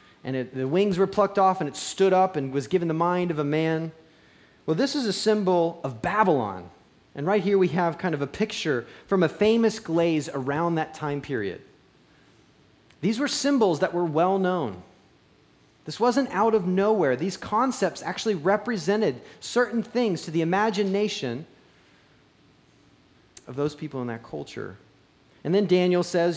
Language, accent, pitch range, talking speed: English, American, 145-200 Hz, 165 wpm